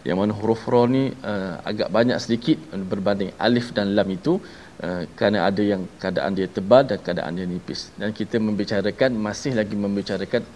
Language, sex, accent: Malayalam, male, Malaysian